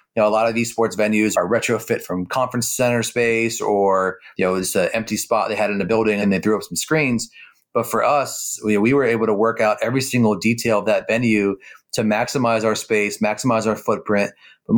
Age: 30-49